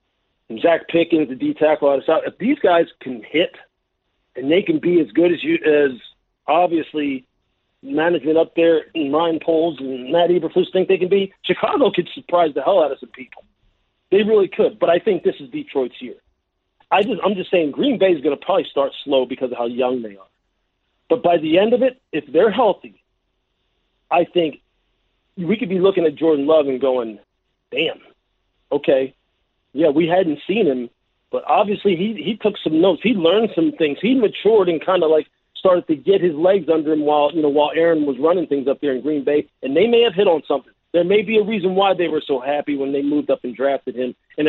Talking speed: 220 wpm